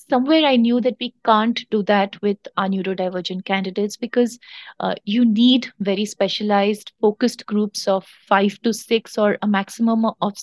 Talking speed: 160 wpm